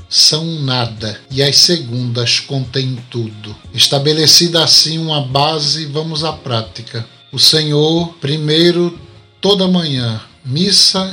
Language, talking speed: Portuguese, 110 wpm